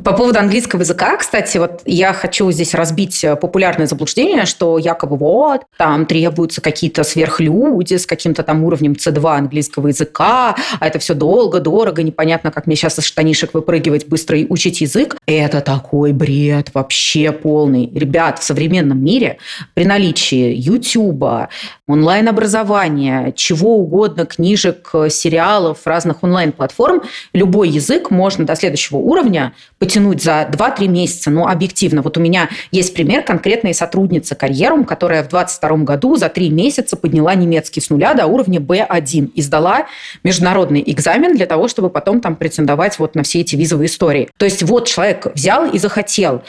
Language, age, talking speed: Russian, 30-49, 150 wpm